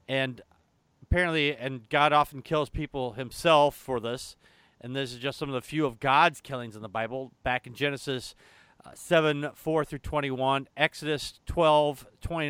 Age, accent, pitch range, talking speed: 40-59, American, 135-195 Hz, 175 wpm